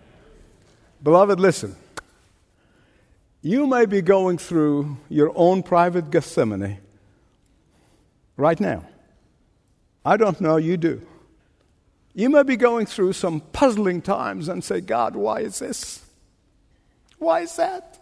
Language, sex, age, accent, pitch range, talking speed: English, male, 60-79, American, 165-270 Hz, 115 wpm